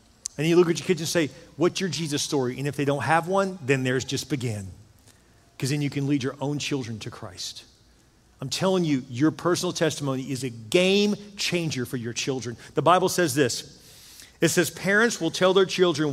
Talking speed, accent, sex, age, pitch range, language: 210 wpm, American, male, 40-59, 125-160 Hz, English